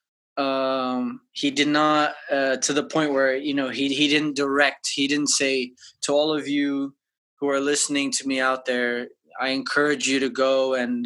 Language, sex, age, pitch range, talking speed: English, male, 20-39, 135-165 Hz, 190 wpm